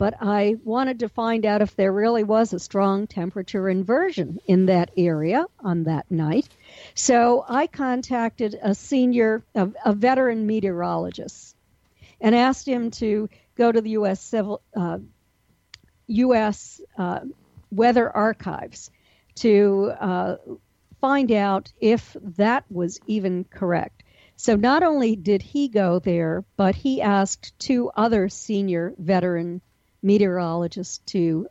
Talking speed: 130 wpm